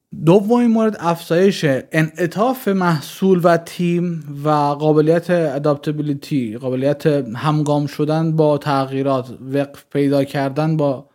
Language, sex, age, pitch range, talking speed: Persian, male, 30-49, 145-180 Hz, 100 wpm